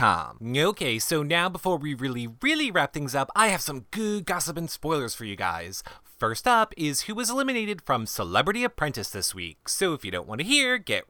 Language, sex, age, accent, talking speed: English, male, 30-49, American, 210 wpm